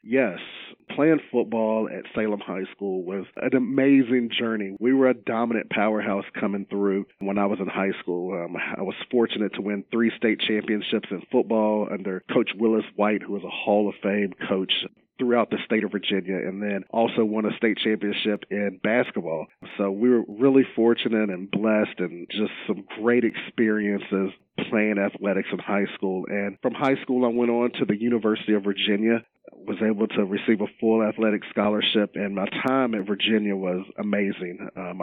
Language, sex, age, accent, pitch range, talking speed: English, male, 40-59, American, 100-115 Hz, 180 wpm